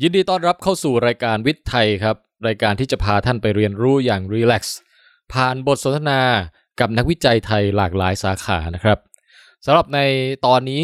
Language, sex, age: Thai, male, 20-39